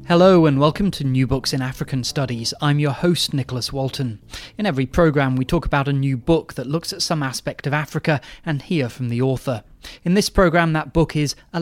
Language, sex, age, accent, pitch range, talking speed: English, male, 30-49, British, 135-175 Hz, 215 wpm